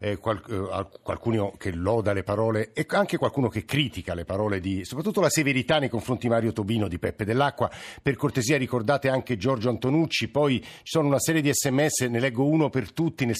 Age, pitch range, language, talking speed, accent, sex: 50-69, 110-135 Hz, Italian, 195 wpm, native, male